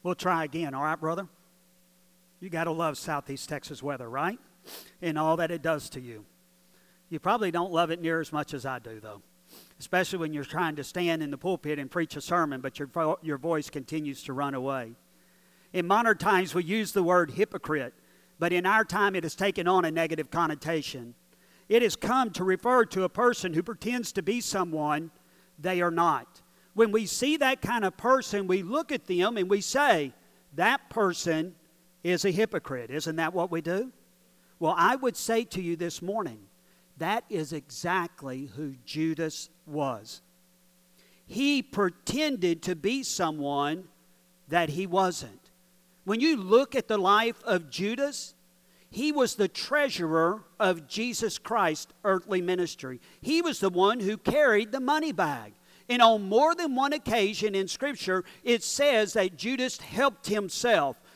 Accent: American